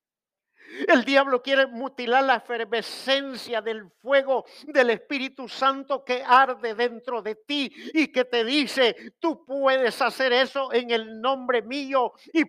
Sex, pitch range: male, 210-275 Hz